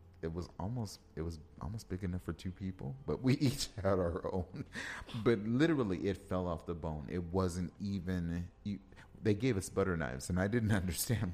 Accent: American